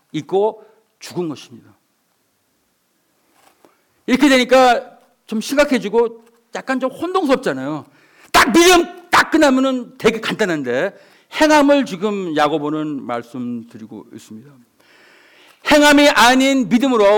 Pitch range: 230-295 Hz